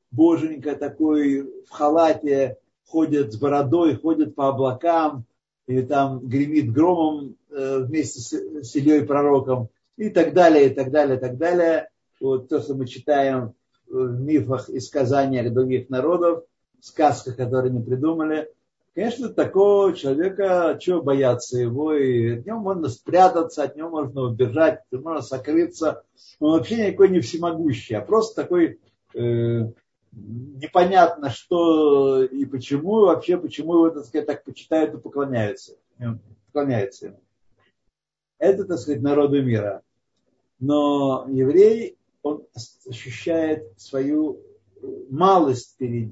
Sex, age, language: male, 50-69, Russian